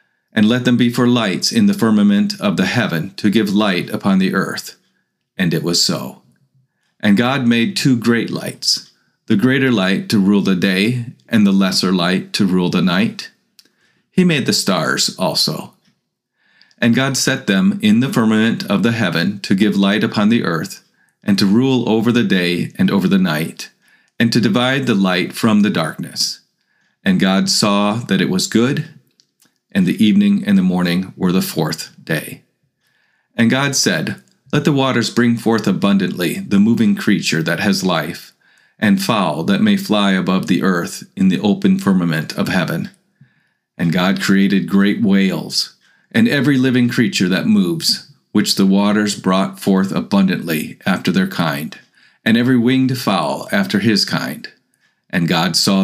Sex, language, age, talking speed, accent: male, English, 40-59, 170 wpm, American